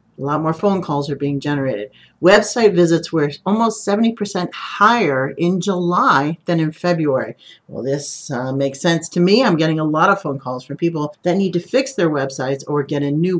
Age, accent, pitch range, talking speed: 50-69, American, 150-210 Hz, 205 wpm